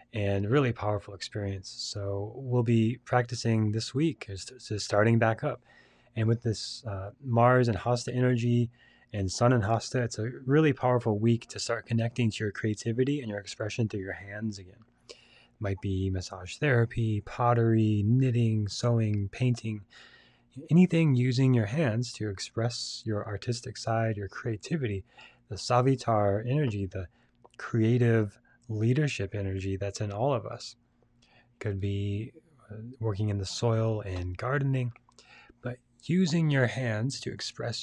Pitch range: 105-125 Hz